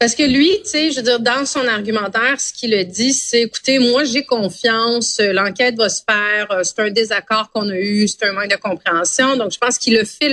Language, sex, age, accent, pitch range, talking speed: French, female, 30-49, Canadian, 205-250 Hz, 240 wpm